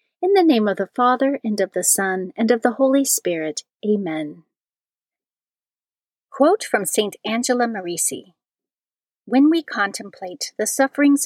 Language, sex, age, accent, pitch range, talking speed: English, female, 40-59, American, 195-265 Hz, 140 wpm